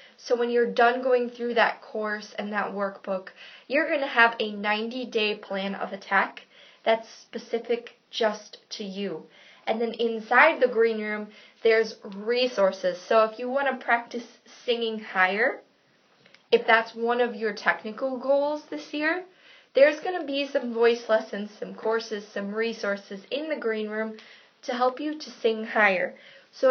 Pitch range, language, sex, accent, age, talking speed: 215-265 Hz, English, female, American, 20-39, 160 wpm